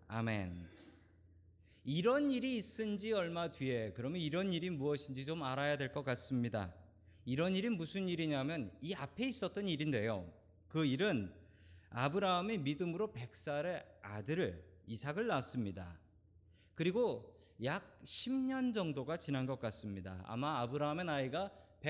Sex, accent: male, native